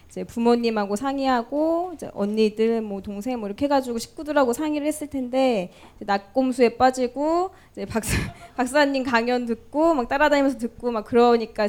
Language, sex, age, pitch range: Korean, female, 20-39, 215-275 Hz